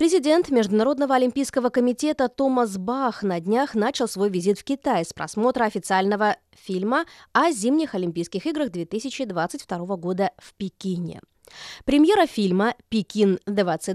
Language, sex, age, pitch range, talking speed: Russian, female, 20-39, 195-270 Hz, 120 wpm